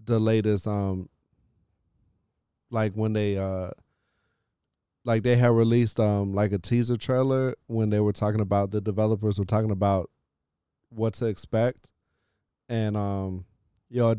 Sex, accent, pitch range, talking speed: male, American, 105-120 Hz, 140 wpm